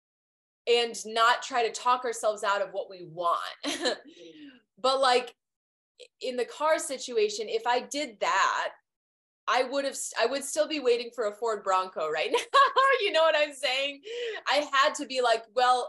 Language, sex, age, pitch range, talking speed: English, female, 20-39, 215-295 Hz, 175 wpm